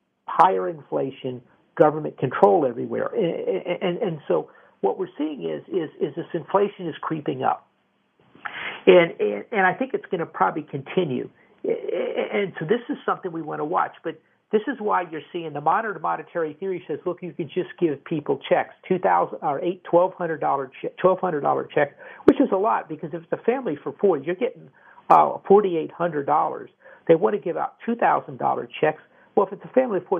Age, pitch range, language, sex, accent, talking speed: 50-69, 160-235 Hz, English, male, American, 180 wpm